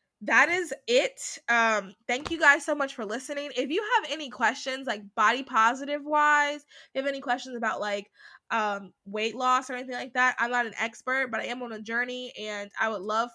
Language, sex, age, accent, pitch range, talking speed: English, female, 20-39, American, 215-260 Hz, 205 wpm